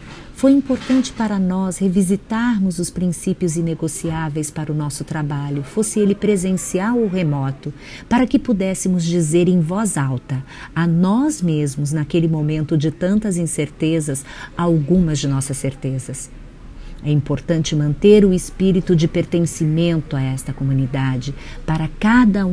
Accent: Brazilian